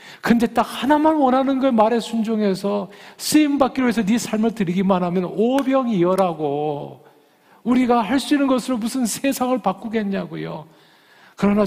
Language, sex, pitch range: Korean, male, 135-195 Hz